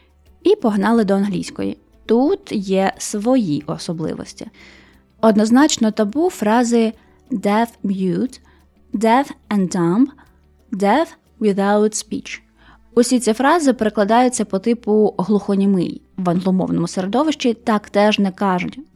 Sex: female